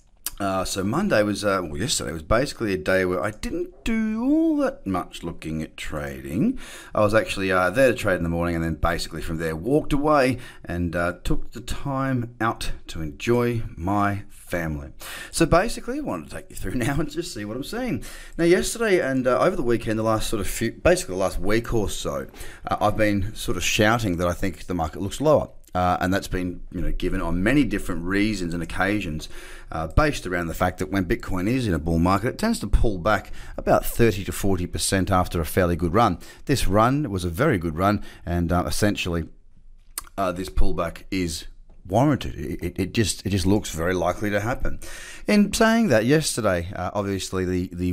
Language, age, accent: English, 30-49, Australian